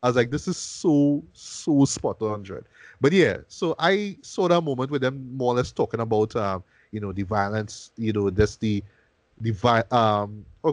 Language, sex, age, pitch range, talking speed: English, male, 20-39, 110-155 Hz, 195 wpm